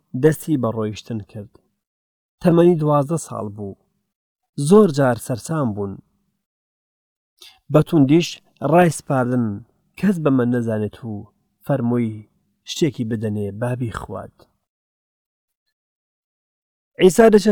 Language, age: English, 40-59